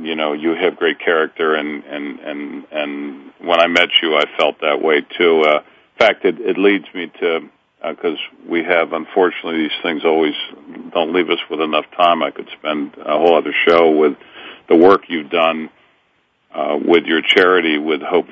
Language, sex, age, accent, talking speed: English, male, 50-69, American, 195 wpm